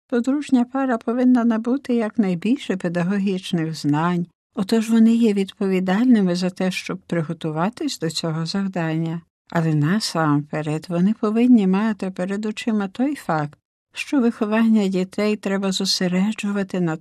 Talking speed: 115 wpm